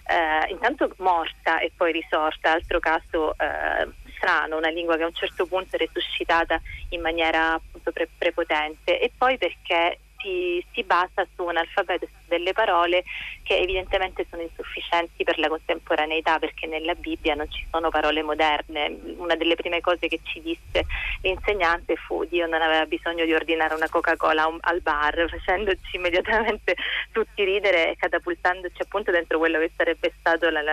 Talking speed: 160 wpm